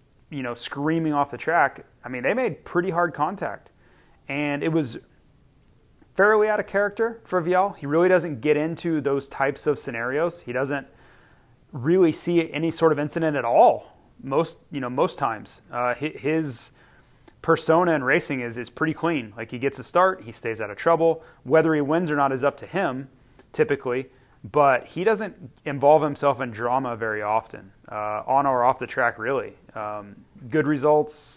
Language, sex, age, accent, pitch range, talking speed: English, male, 30-49, American, 125-160 Hz, 180 wpm